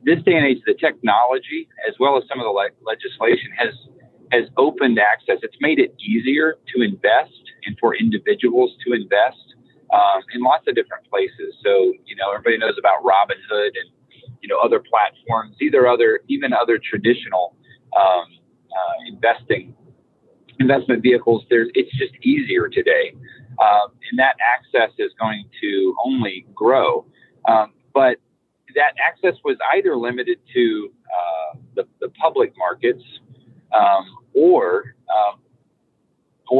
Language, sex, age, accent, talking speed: English, male, 30-49, American, 140 wpm